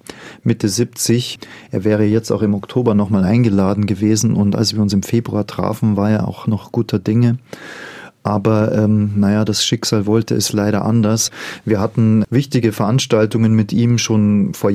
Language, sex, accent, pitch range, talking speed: German, male, German, 105-125 Hz, 165 wpm